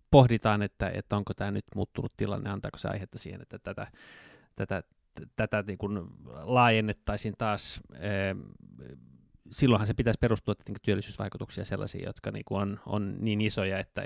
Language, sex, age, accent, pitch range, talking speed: Finnish, male, 20-39, native, 100-115 Hz, 145 wpm